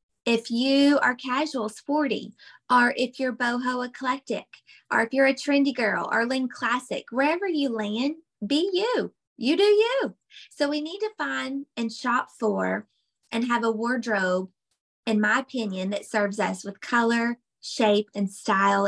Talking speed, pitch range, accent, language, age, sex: 160 wpm, 215-260 Hz, American, English, 20-39, female